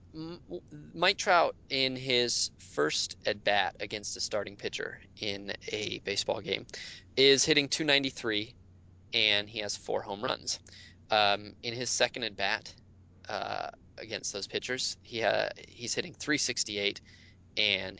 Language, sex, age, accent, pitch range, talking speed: English, male, 20-39, American, 100-125 Hz, 135 wpm